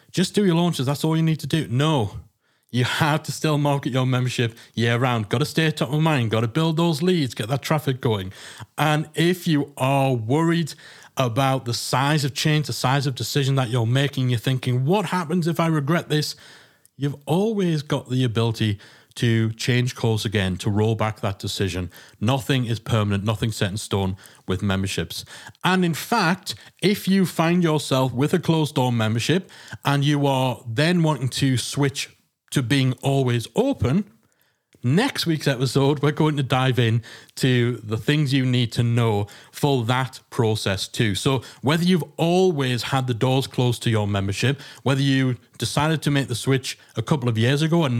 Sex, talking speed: male, 190 wpm